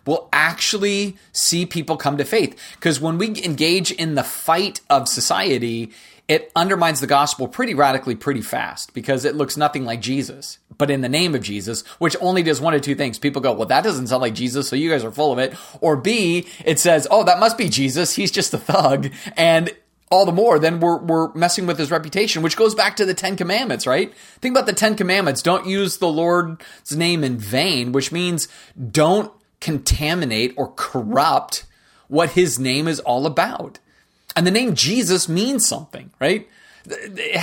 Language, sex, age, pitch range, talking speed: English, male, 30-49, 135-180 Hz, 195 wpm